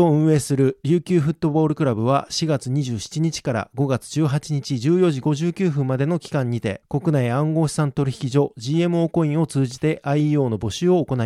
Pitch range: 135-170 Hz